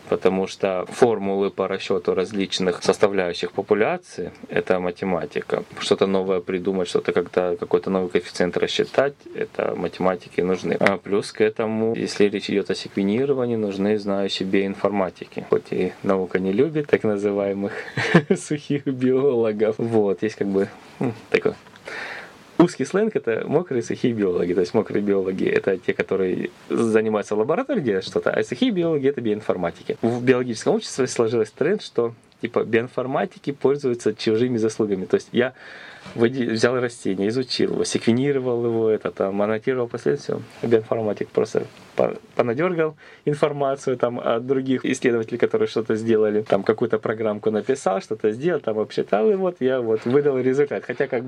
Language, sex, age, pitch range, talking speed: Russian, male, 20-39, 100-135 Hz, 145 wpm